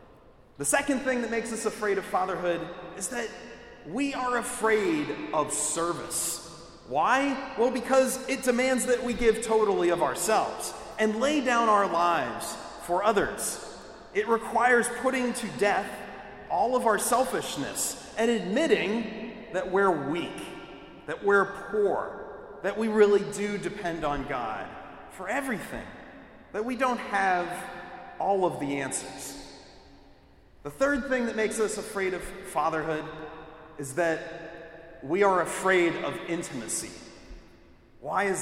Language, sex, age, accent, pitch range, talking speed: English, male, 30-49, American, 185-245 Hz, 135 wpm